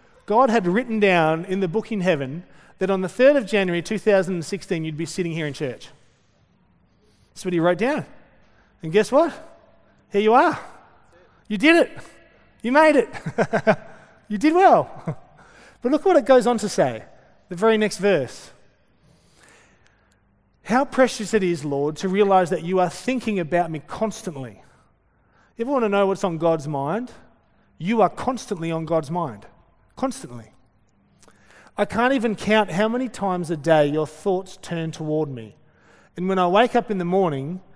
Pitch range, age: 160-220 Hz, 30-49